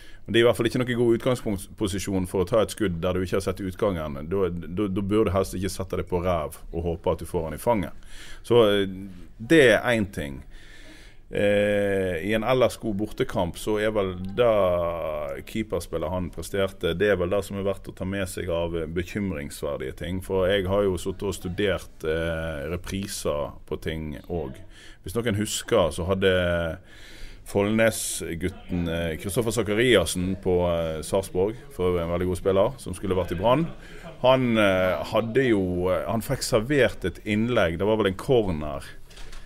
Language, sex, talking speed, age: English, male, 180 wpm, 30-49